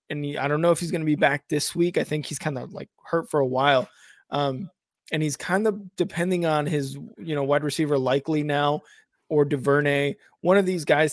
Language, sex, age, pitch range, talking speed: English, male, 20-39, 140-170 Hz, 225 wpm